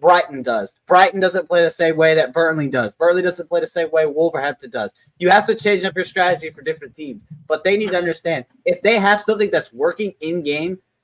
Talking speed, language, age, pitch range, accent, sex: 225 wpm, English, 20-39, 160-195 Hz, American, male